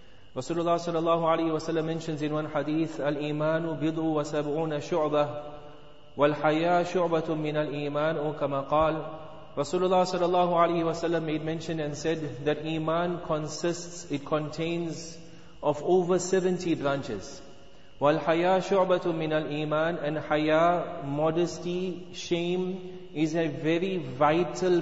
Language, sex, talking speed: English, male, 130 wpm